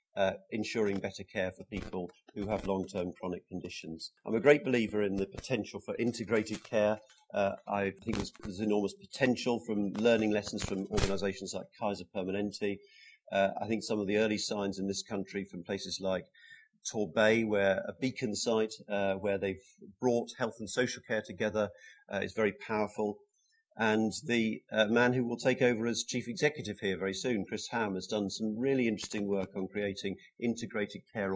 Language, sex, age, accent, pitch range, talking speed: English, male, 40-59, British, 95-115 Hz, 180 wpm